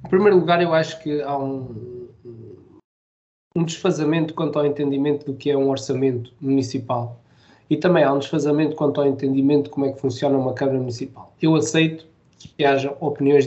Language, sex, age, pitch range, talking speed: Portuguese, male, 20-39, 140-190 Hz, 180 wpm